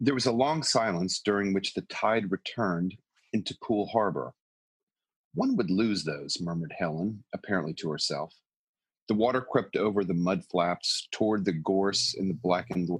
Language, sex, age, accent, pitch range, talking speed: English, male, 40-59, American, 90-105 Hz, 160 wpm